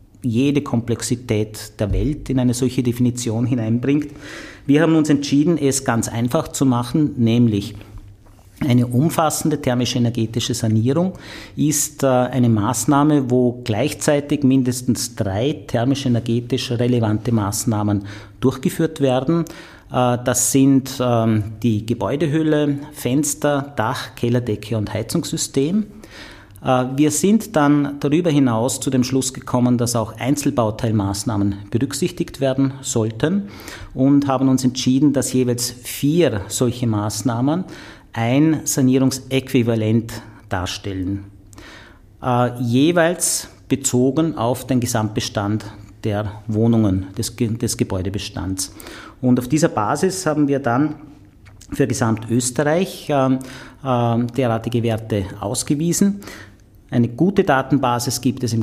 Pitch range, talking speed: 110-140 Hz, 100 wpm